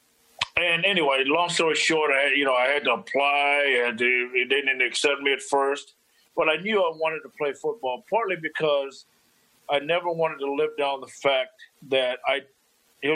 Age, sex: 50-69, male